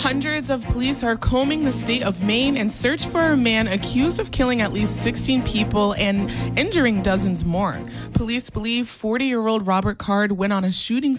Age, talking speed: 20-39, 180 wpm